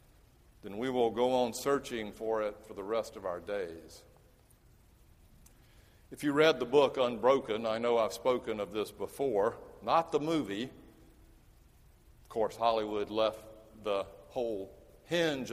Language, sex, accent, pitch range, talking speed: English, male, American, 115-150 Hz, 145 wpm